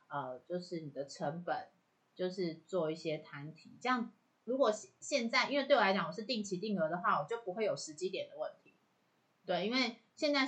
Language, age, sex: Chinese, 30-49, female